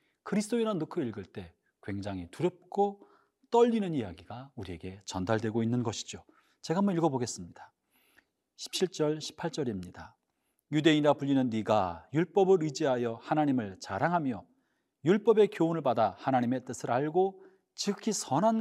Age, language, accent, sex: 40-59, Korean, native, male